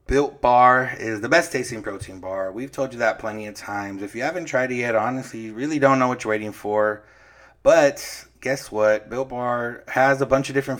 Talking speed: 220 wpm